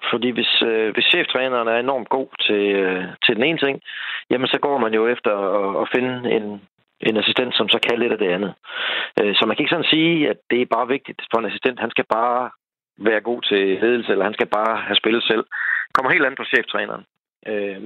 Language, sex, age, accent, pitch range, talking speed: Danish, male, 30-49, native, 105-120 Hz, 230 wpm